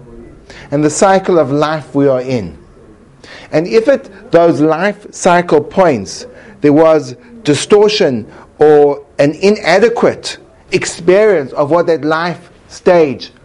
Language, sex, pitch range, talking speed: English, male, 145-195 Hz, 120 wpm